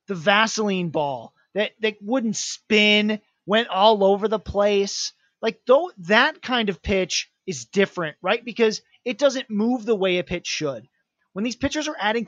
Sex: male